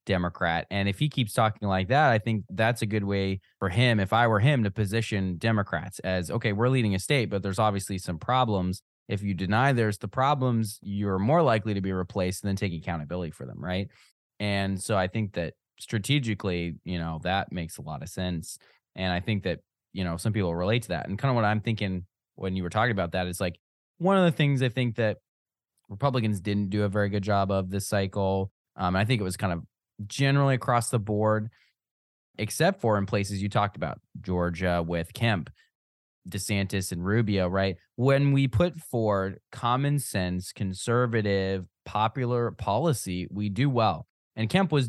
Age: 20-39